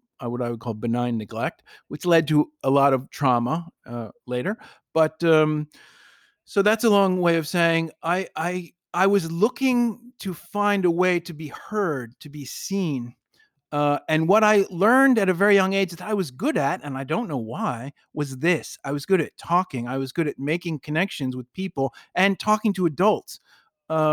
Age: 40-59